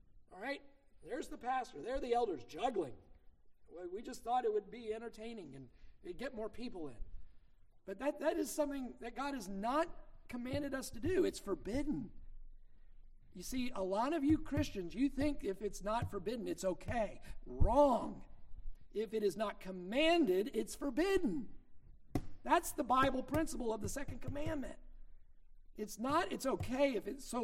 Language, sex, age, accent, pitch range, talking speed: English, male, 50-69, American, 190-285 Hz, 165 wpm